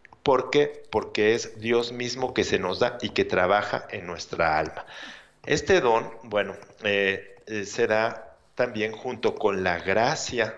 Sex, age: male, 50-69